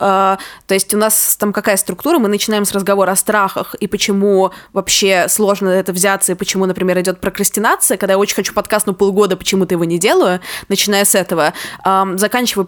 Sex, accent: female, native